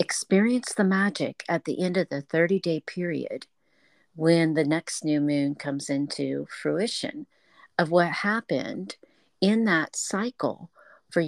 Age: 50-69